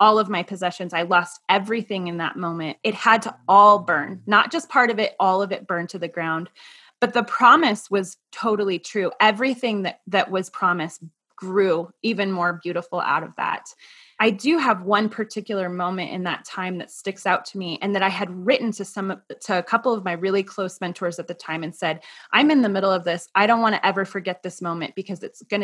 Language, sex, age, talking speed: English, female, 20-39, 225 wpm